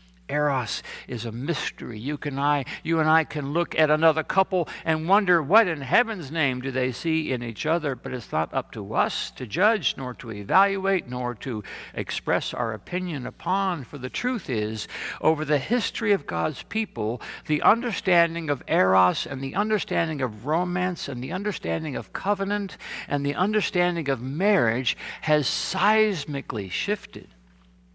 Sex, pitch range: male, 130-180 Hz